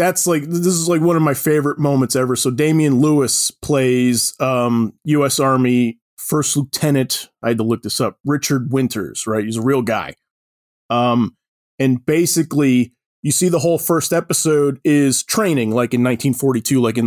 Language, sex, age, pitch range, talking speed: English, male, 20-39, 125-155 Hz, 170 wpm